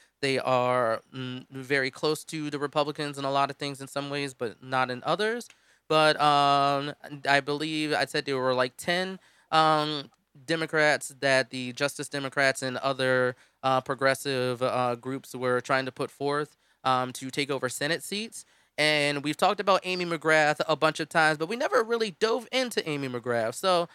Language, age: English, 20-39